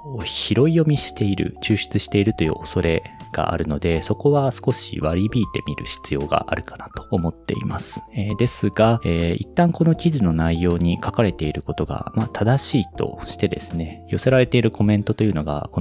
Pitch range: 85-125 Hz